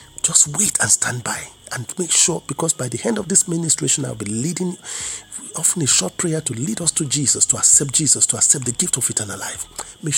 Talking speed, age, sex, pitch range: 225 wpm, 50-69, male, 125-165 Hz